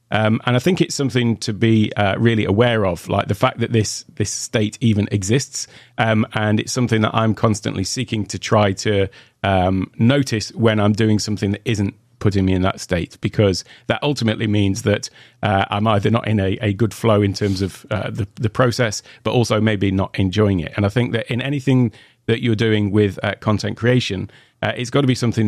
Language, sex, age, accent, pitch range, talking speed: English, male, 40-59, British, 100-120 Hz, 215 wpm